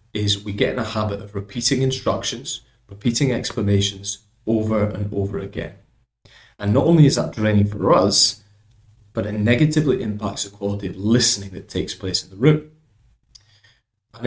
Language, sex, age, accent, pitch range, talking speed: English, male, 30-49, British, 105-120 Hz, 160 wpm